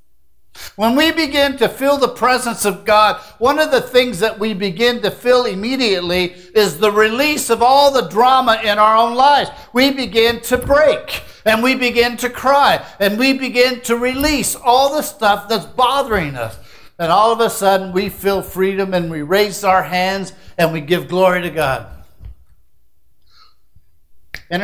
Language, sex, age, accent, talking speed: English, male, 60-79, American, 170 wpm